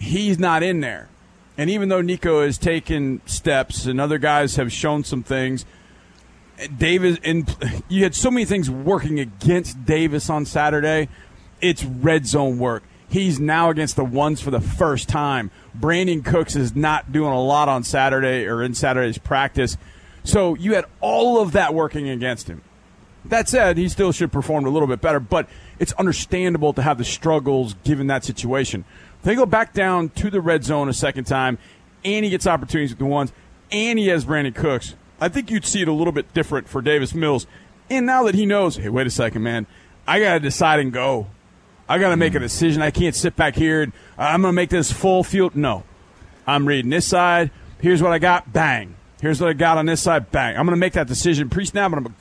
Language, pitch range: English, 130-175 Hz